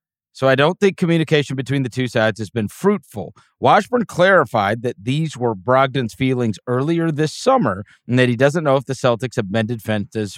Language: English